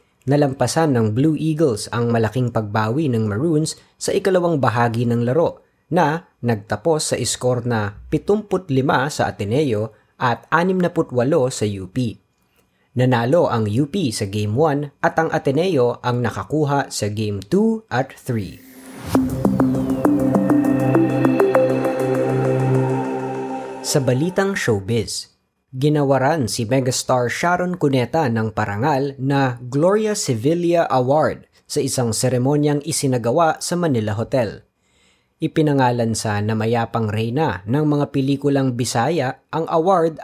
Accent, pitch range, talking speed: native, 115-155 Hz, 110 wpm